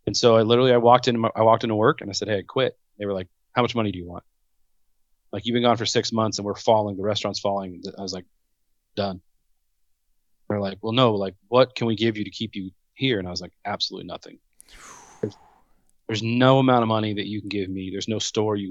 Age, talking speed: 30-49, 250 wpm